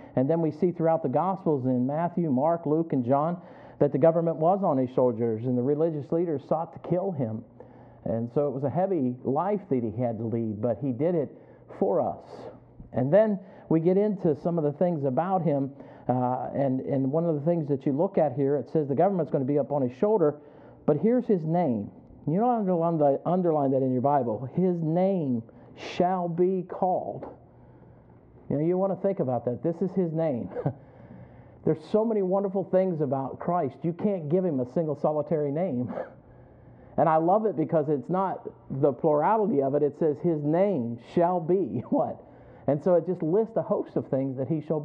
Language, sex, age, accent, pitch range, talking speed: English, male, 50-69, American, 135-180 Hz, 205 wpm